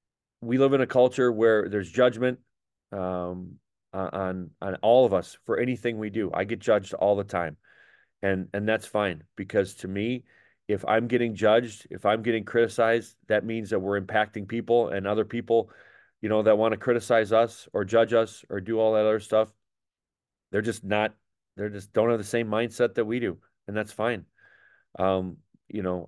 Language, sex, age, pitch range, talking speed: English, male, 30-49, 100-120 Hz, 190 wpm